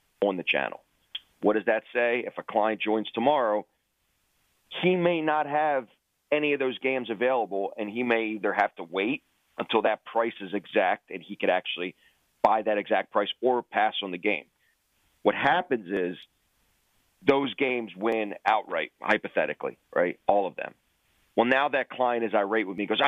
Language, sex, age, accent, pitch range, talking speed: English, male, 40-59, American, 105-130 Hz, 175 wpm